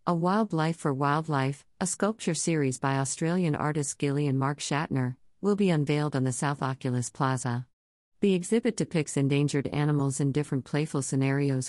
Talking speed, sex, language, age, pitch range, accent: 155 wpm, female, English, 50-69, 130-155 Hz, American